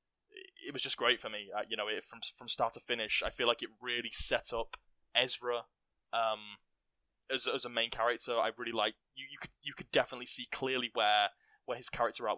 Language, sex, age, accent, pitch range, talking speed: English, male, 10-29, British, 110-145 Hz, 220 wpm